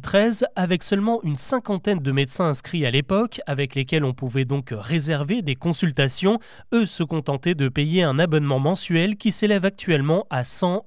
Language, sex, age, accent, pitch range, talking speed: French, male, 20-39, French, 145-205 Hz, 170 wpm